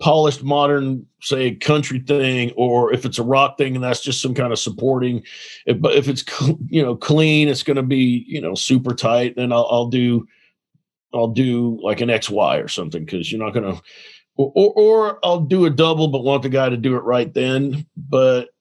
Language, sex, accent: English, male, American